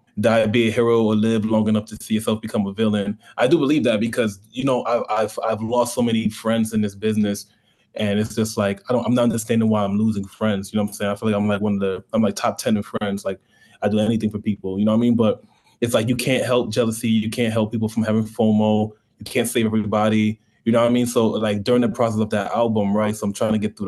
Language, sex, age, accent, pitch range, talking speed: English, male, 20-39, American, 105-115 Hz, 280 wpm